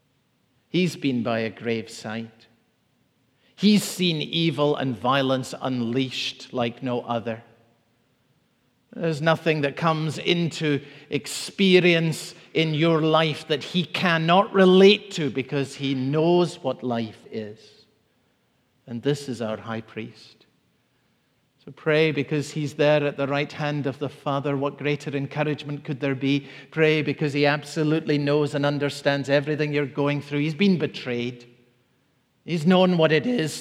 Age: 50-69